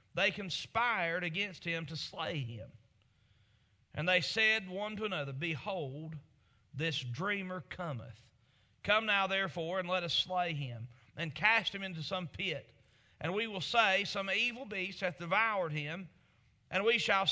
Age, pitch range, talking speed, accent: 40-59, 130-185 Hz, 150 wpm, American